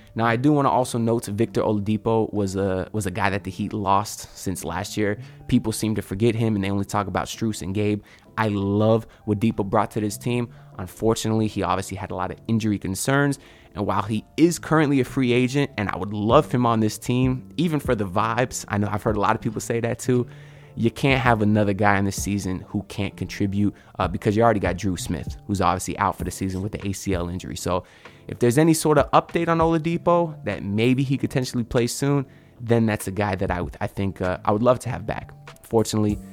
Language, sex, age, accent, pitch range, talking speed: English, male, 20-39, American, 100-125 Hz, 235 wpm